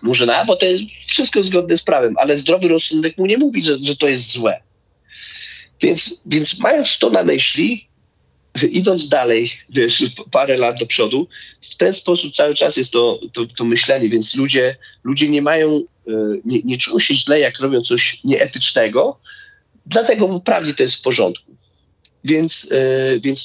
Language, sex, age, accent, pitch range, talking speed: Polish, male, 40-59, native, 115-170 Hz, 165 wpm